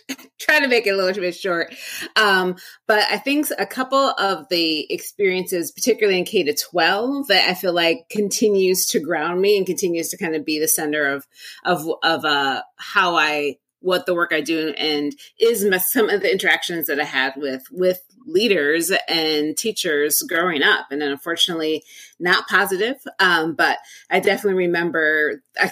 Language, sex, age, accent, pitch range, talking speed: English, female, 30-49, American, 165-210 Hz, 175 wpm